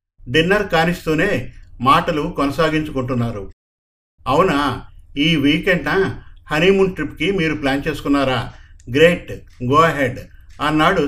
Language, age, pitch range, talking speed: Telugu, 50-69, 120-160 Hz, 85 wpm